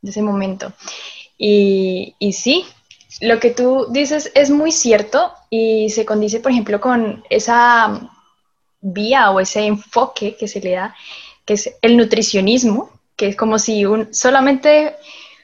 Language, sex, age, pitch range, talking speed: Romanian, female, 10-29, 200-250 Hz, 150 wpm